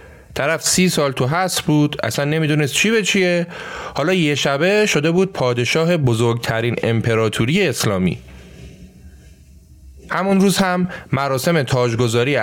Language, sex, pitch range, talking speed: Persian, male, 115-170 Hz, 120 wpm